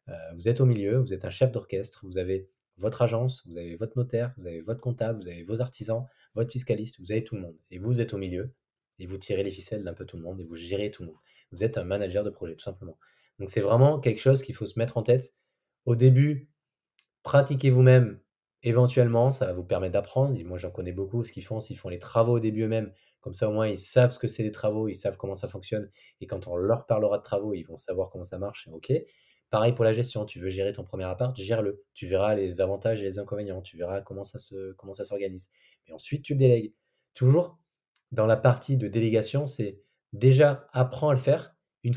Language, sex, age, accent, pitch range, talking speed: French, male, 20-39, French, 100-130 Hz, 245 wpm